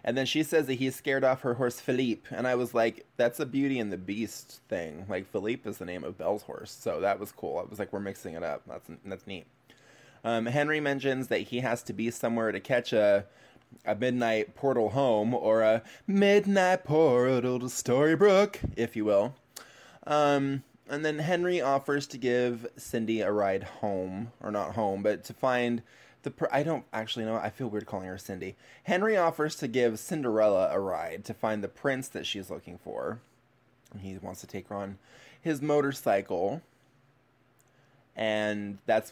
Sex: male